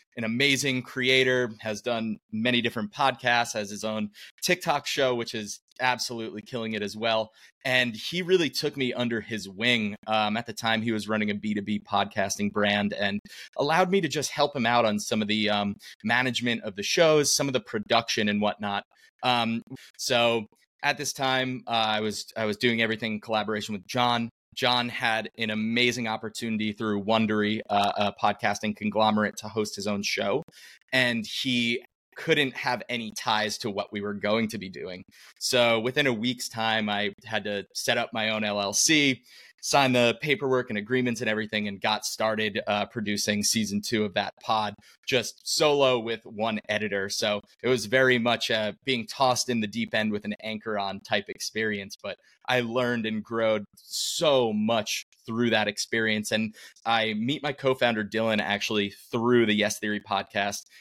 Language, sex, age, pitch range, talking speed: English, male, 30-49, 105-125 Hz, 180 wpm